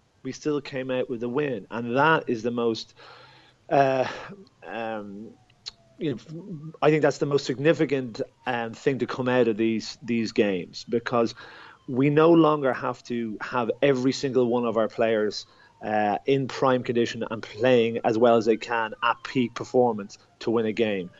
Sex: male